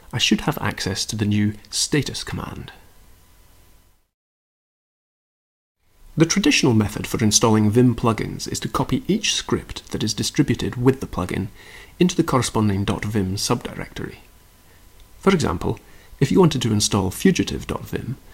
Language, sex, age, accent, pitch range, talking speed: English, male, 30-49, British, 90-125 Hz, 130 wpm